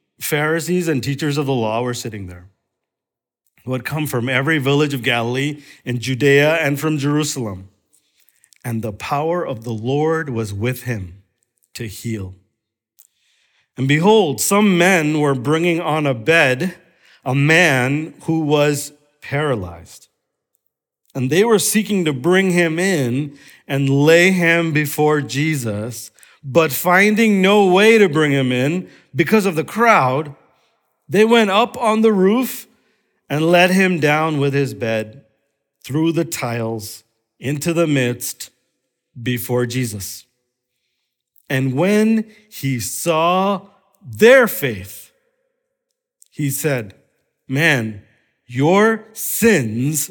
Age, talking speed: 50-69, 125 wpm